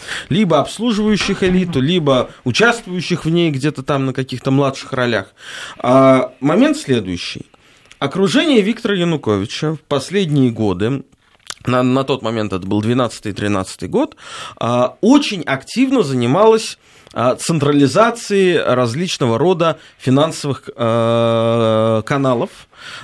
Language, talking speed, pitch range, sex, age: Russian, 95 wpm, 110-180 Hz, male, 20-39